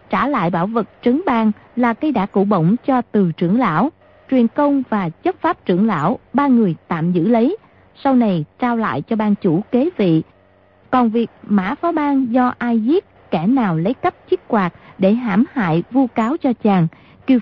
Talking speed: 200 wpm